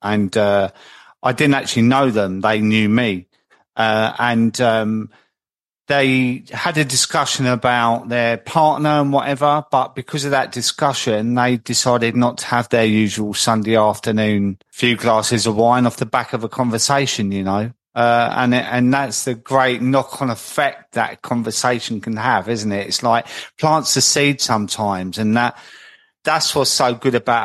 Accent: British